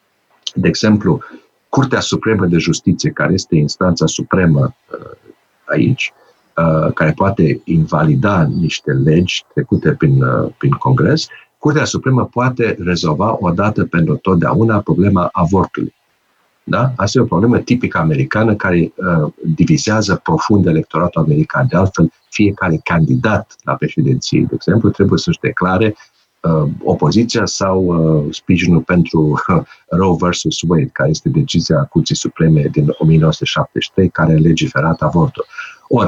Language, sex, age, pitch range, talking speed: Romanian, male, 50-69, 85-125 Hz, 130 wpm